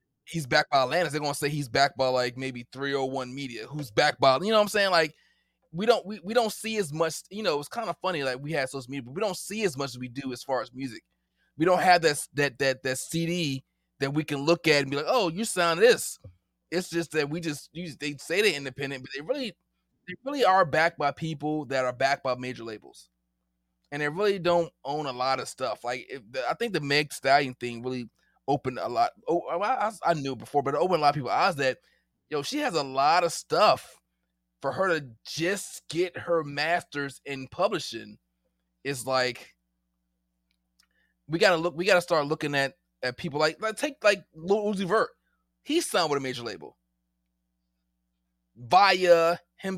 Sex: male